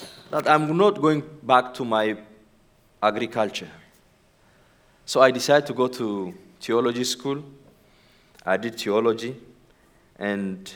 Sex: male